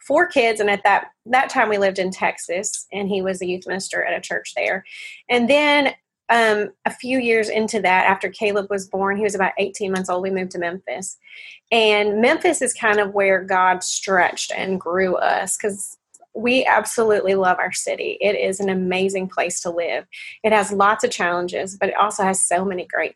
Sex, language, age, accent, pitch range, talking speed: female, English, 30-49, American, 185-225 Hz, 205 wpm